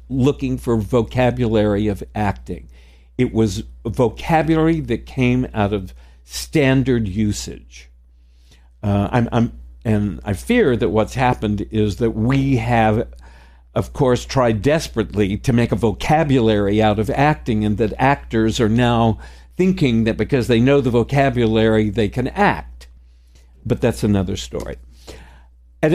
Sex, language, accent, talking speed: male, English, American, 135 wpm